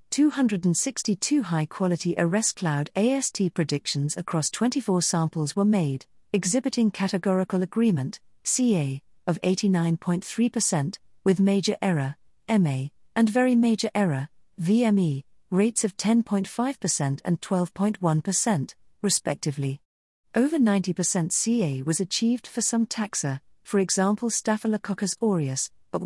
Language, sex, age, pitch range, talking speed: English, female, 50-69, 165-220 Hz, 105 wpm